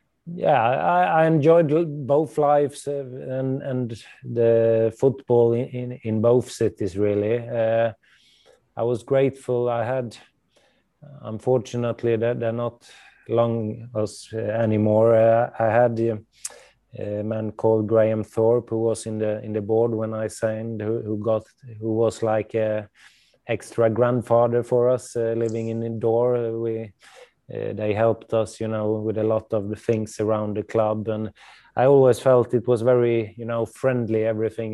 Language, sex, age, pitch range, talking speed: English, male, 20-39, 110-120 Hz, 155 wpm